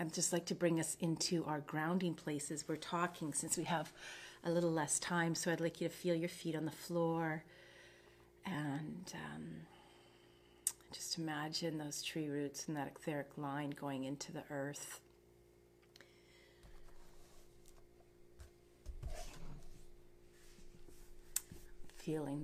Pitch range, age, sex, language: 140-165 Hz, 40-59, female, English